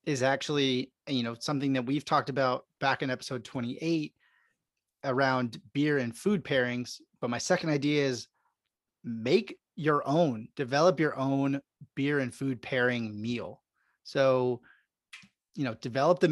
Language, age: English, 30-49